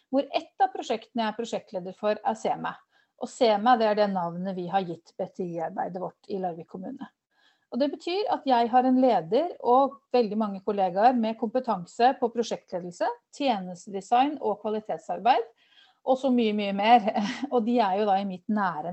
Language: English